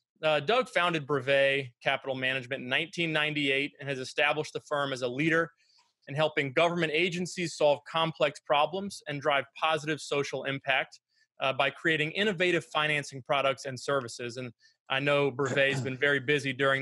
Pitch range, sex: 130-155 Hz, male